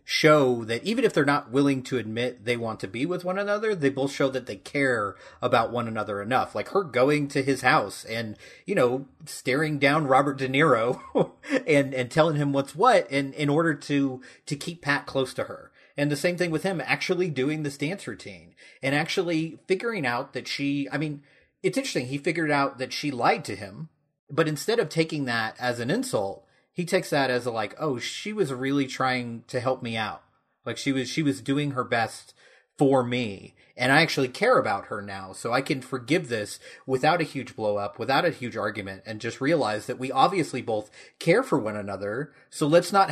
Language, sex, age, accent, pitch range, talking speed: English, male, 30-49, American, 120-150 Hz, 215 wpm